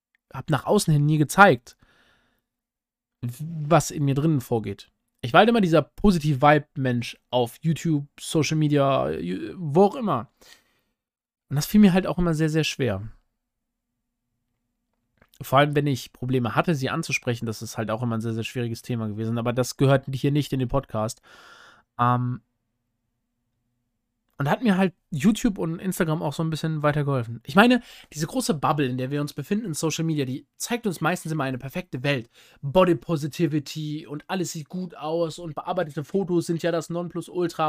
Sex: male